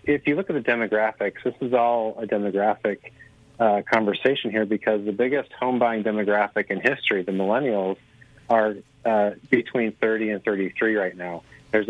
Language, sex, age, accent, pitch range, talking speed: English, male, 40-59, American, 100-120 Hz, 160 wpm